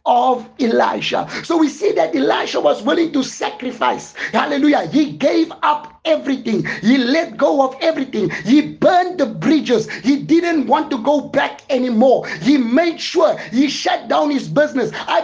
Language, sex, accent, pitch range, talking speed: English, male, South African, 270-315 Hz, 160 wpm